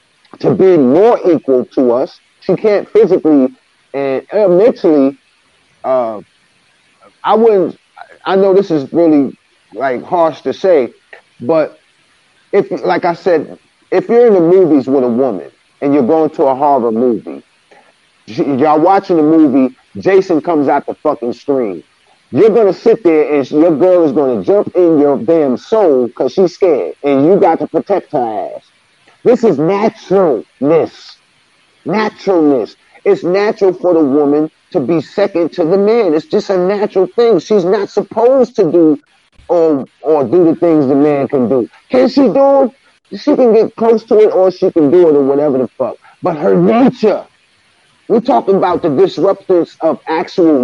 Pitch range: 150-210 Hz